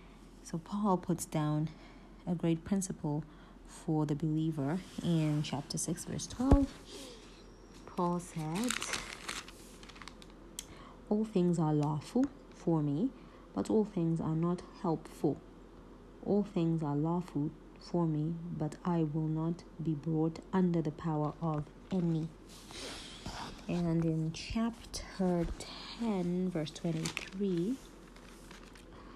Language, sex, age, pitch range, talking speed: English, female, 30-49, 155-185 Hz, 105 wpm